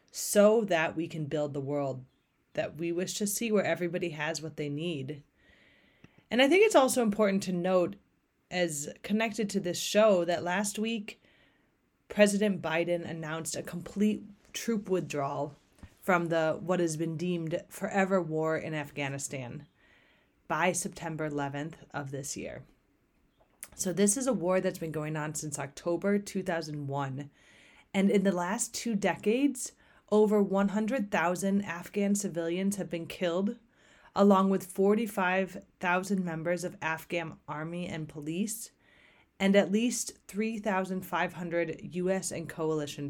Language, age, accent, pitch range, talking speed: English, 30-49, American, 160-205 Hz, 135 wpm